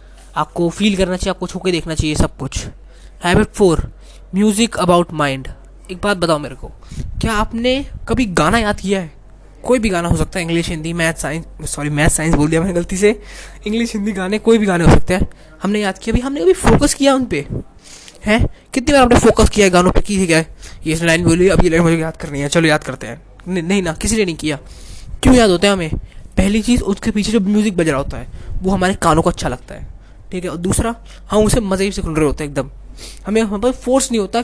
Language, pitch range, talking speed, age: Hindi, 160-210 Hz, 230 wpm, 20-39